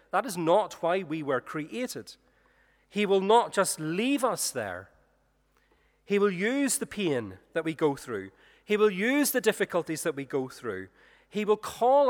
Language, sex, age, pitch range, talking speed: English, male, 40-59, 135-210 Hz, 175 wpm